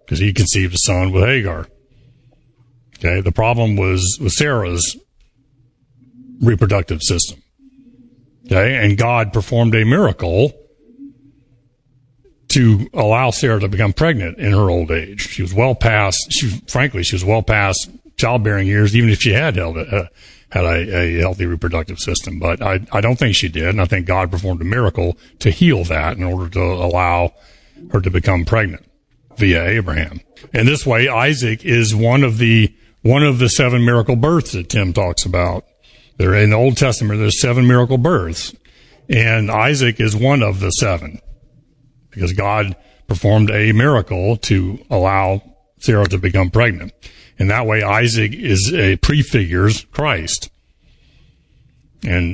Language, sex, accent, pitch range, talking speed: English, male, American, 90-125 Hz, 155 wpm